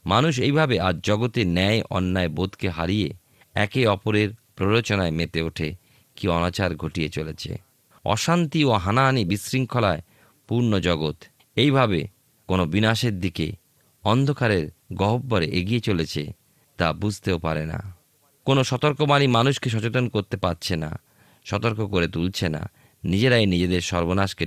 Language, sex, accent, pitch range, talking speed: Bengali, male, native, 90-120 Hz, 120 wpm